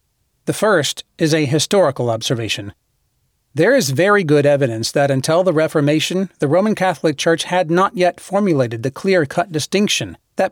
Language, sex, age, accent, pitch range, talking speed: English, male, 40-59, American, 140-180 Hz, 155 wpm